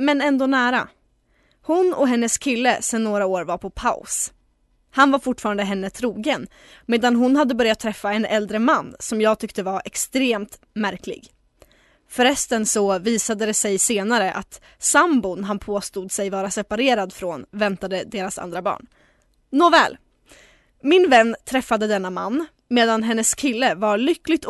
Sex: female